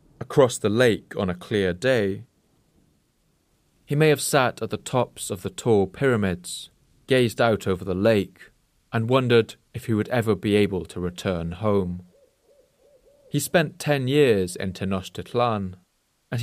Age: 30-49